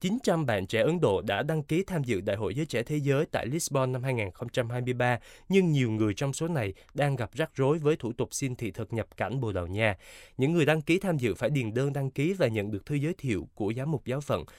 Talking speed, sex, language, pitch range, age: 260 wpm, male, Vietnamese, 115-155 Hz, 20-39